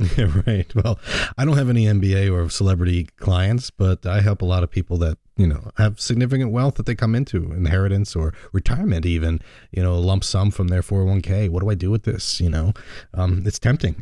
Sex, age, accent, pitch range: male, 30-49, American, 90-105 Hz